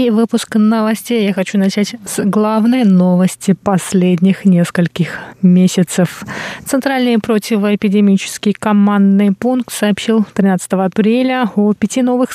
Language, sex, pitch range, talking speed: Russian, female, 190-225 Hz, 105 wpm